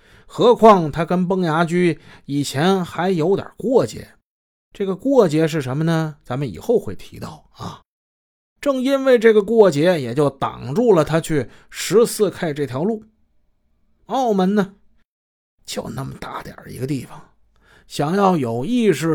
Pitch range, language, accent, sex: 130-190 Hz, Chinese, native, male